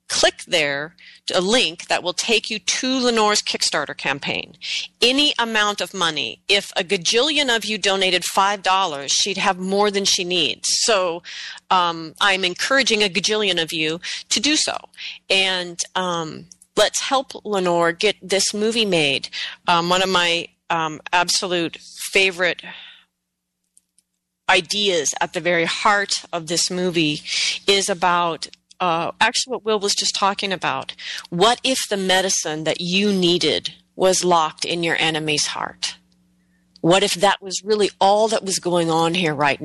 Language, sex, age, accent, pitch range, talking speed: English, female, 30-49, American, 165-205 Hz, 150 wpm